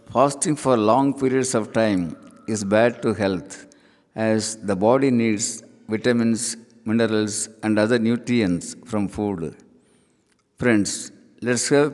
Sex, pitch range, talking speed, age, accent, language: male, 110-130 Hz, 120 wpm, 60-79, native, Tamil